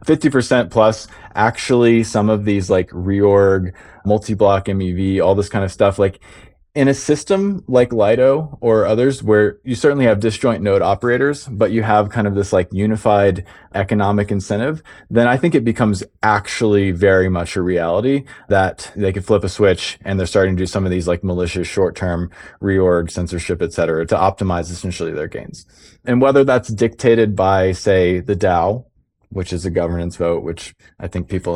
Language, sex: English, male